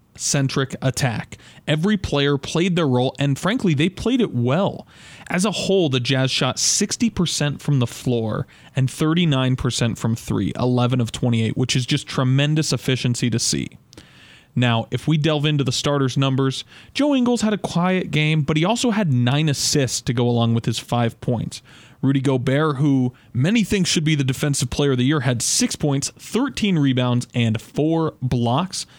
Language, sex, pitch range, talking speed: English, male, 125-160 Hz, 180 wpm